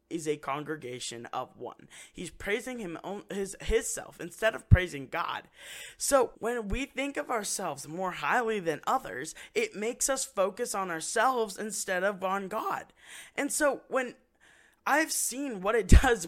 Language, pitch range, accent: English, 150-215 Hz, American